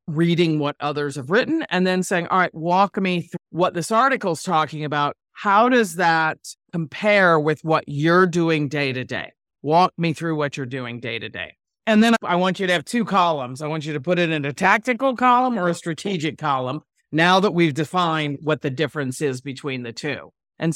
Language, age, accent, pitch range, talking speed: English, 40-59, American, 150-185 Hz, 215 wpm